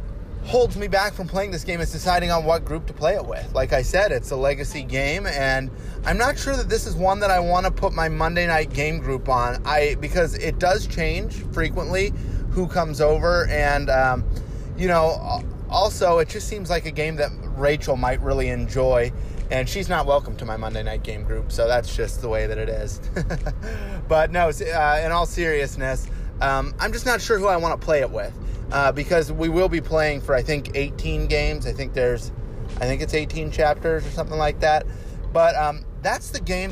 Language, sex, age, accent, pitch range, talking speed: English, male, 20-39, American, 115-155 Hz, 215 wpm